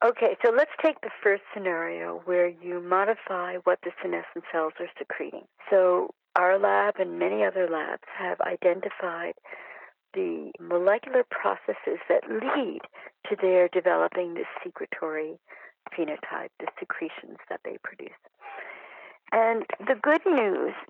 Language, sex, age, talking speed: English, female, 60-79, 130 wpm